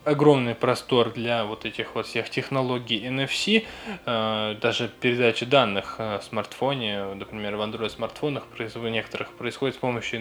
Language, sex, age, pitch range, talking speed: Russian, male, 10-29, 110-130 Hz, 125 wpm